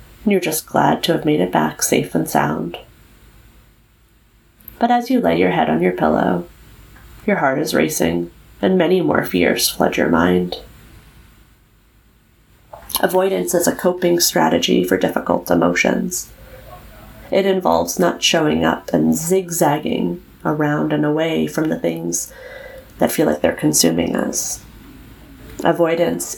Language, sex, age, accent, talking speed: English, female, 30-49, American, 135 wpm